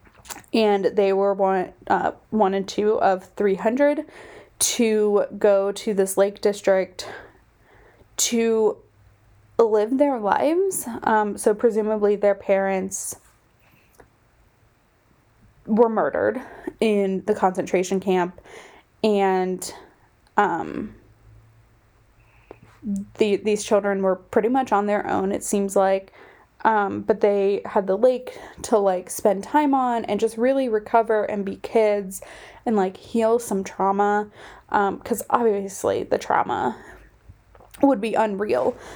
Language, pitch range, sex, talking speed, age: English, 195-225 Hz, female, 120 wpm, 20-39